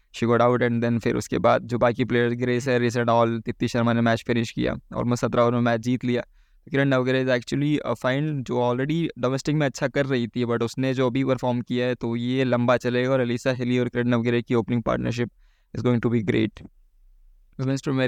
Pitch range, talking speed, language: 120-135 Hz, 220 wpm, Hindi